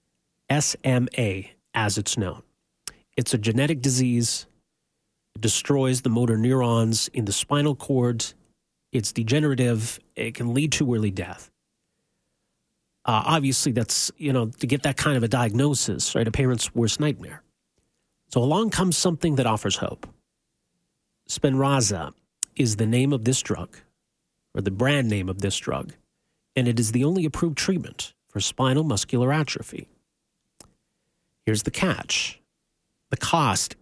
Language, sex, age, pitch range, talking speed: English, male, 40-59, 110-140 Hz, 140 wpm